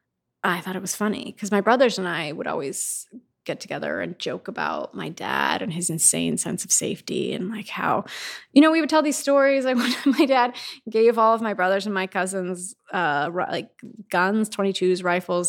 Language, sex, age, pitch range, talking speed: English, female, 20-39, 180-245 Hz, 200 wpm